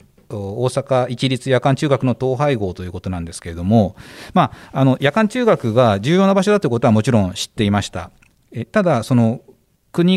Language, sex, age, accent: Japanese, male, 40-59, native